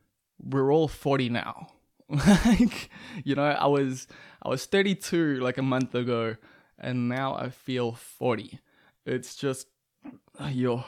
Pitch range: 120-140 Hz